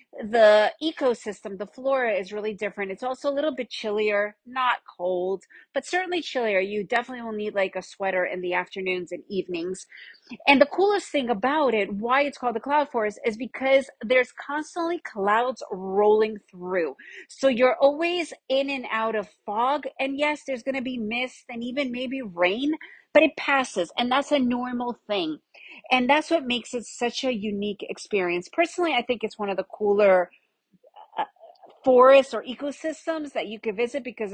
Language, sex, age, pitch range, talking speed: English, female, 40-59, 205-275 Hz, 180 wpm